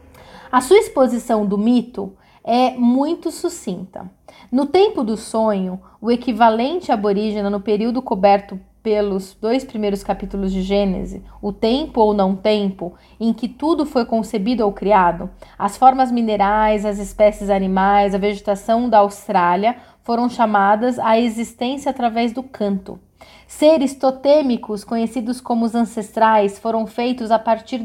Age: 30-49